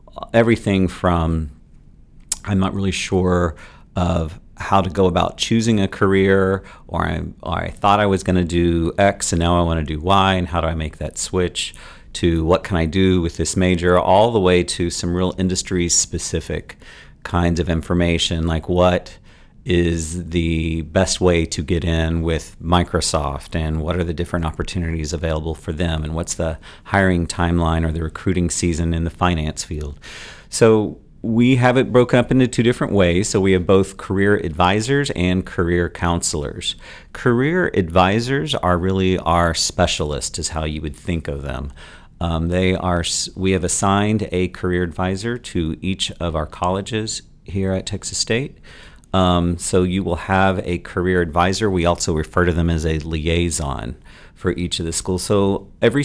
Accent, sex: American, male